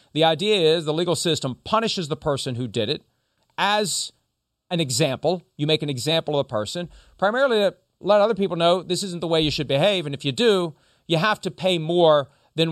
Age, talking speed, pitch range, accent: 40-59, 210 wpm, 135-170 Hz, American